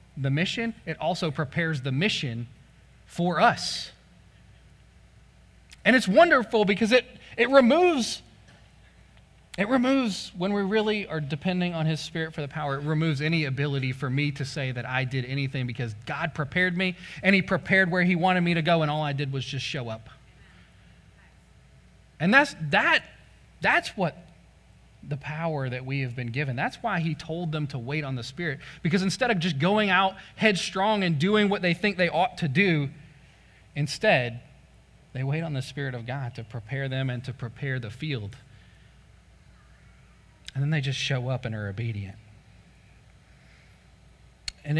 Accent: American